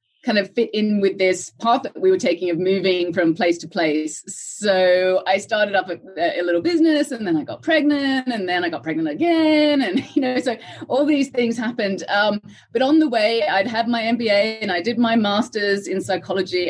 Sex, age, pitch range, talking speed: female, 30-49, 175-235 Hz, 215 wpm